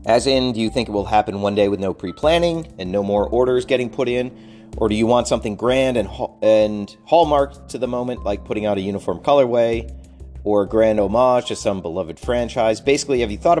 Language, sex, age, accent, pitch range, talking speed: English, male, 40-59, American, 95-120 Hz, 225 wpm